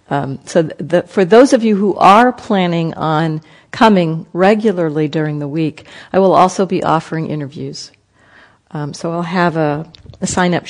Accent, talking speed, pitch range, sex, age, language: American, 165 wpm, 150-185 Hz, female, 50-69, English